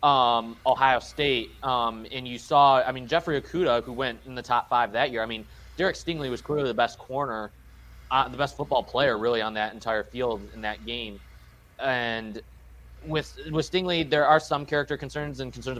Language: English